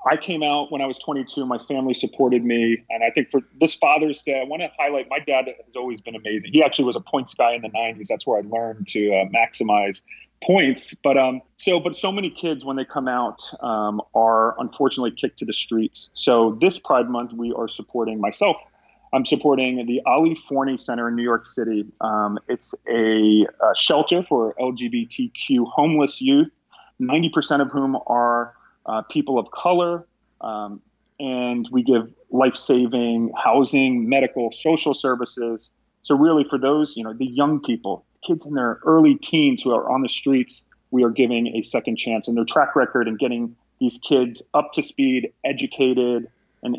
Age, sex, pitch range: 30-49, male, 115-145 Hz